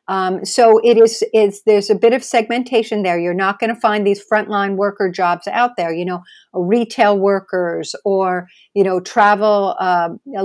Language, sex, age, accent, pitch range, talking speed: English, female, 50-69, American, 180-210 Hz, 185 wpm